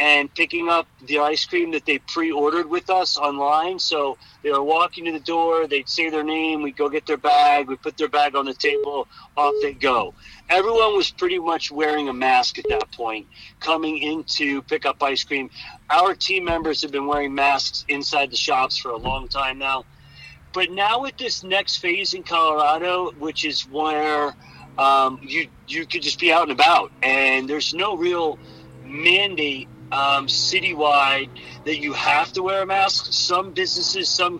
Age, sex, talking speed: 40-59, male, 185 wpm